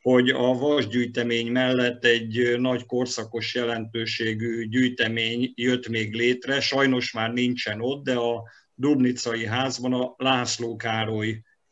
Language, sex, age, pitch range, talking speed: Hungarian, male, 50-69, 115-125 Hz, 120 wpm